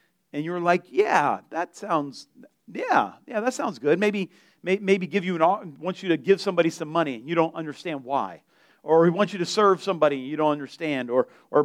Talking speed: 200 wpm